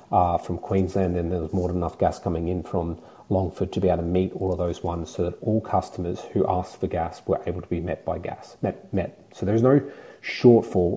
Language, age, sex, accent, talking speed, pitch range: English, 30-49, male, Australian, 245 wpm, 90-100 Hz